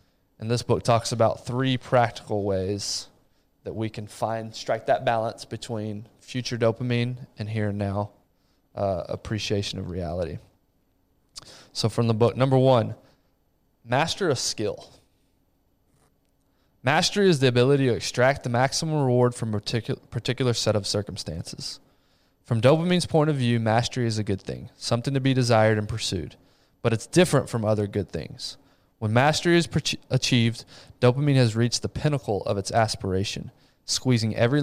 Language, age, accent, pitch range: English, 20-39, American, 105-130 Hz